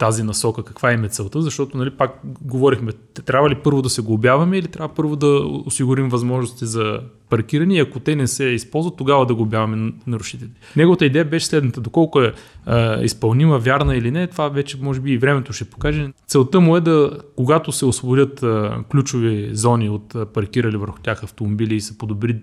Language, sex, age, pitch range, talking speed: Bulgarian, male, 30-49, 110-140 Hz, 185 wpm